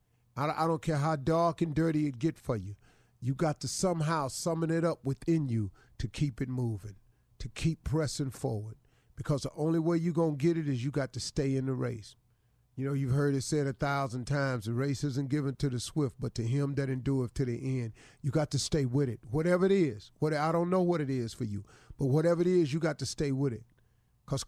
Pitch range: 120-155 Hz